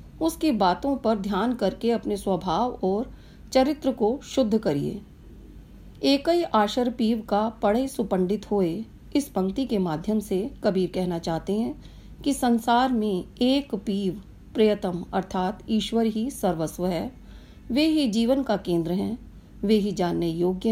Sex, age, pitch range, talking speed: female, 40-59, 185-235 Hz, 145 wpm